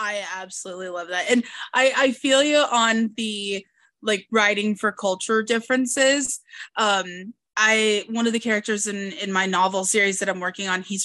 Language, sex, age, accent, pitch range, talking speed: English, female, 20-39, American, 190-235 Hz, 175 wpm